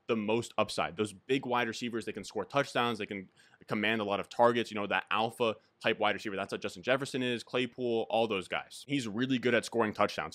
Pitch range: 105-120 Hz